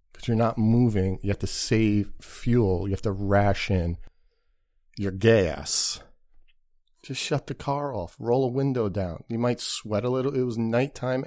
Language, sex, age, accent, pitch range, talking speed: English, male, 40-59, American, 95-115 Hz, 165 wpm